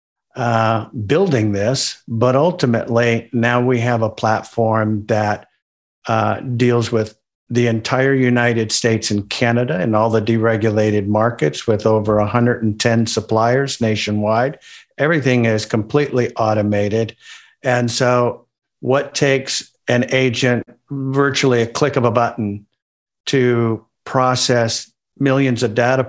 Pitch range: 110-125 Hz